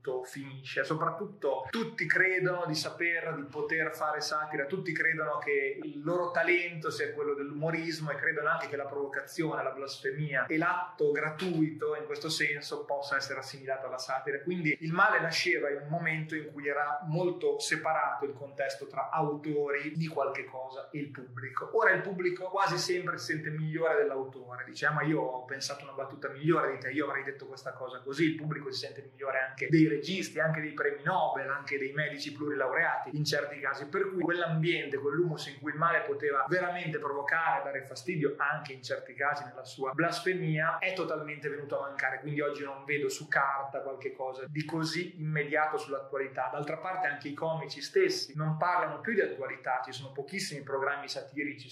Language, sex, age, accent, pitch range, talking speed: Italian, male, 30-49, native, 140-170 Hz, 180 wpm